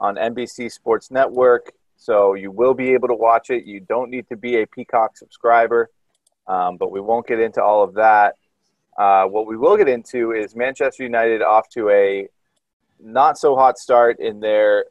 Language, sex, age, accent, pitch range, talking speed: English, male, 30-49, American, 110-135 Hz, 180 wpm